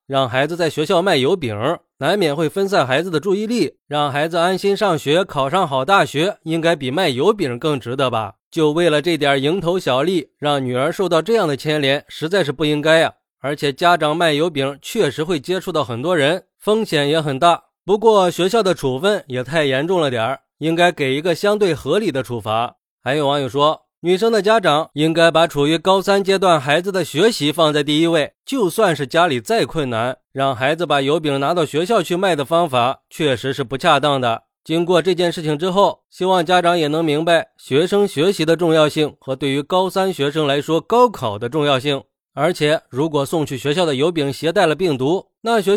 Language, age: Chinese, 20-39